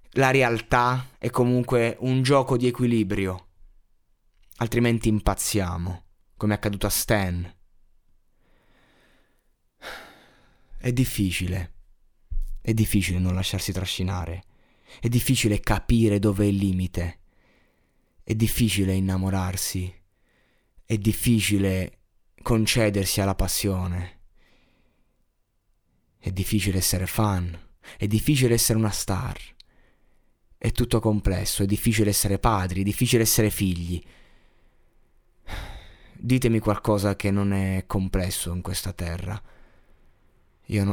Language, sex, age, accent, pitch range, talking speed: Italian, male, 20-39, native, 95-115 Hz, 100 wpm